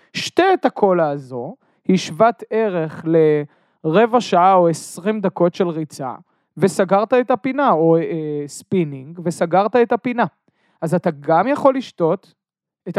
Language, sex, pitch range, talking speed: Hebrew, male, 165-215 Hz, 130 wpm